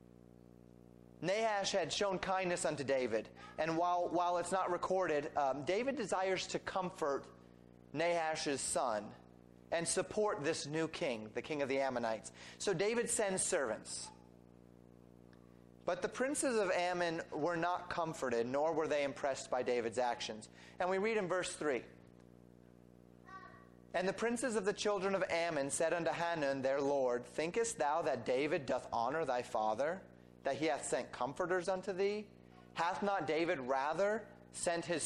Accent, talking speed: American, 150 wpm